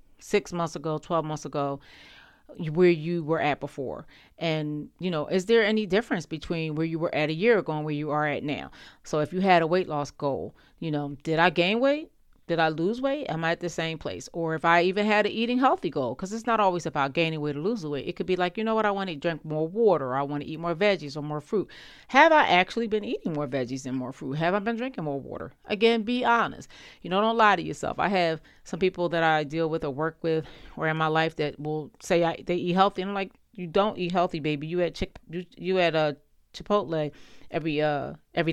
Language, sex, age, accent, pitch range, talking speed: English, female, 40-59, American, 150-195 Hz, 250 wpm